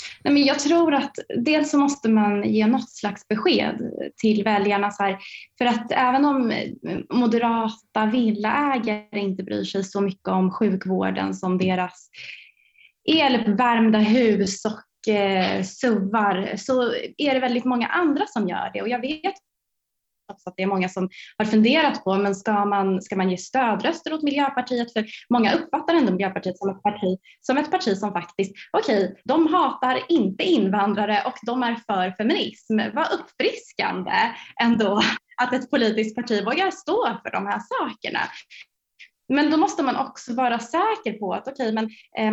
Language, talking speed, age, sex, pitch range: Swedish, 165 wpm, 20-39, female, 195-255 Hz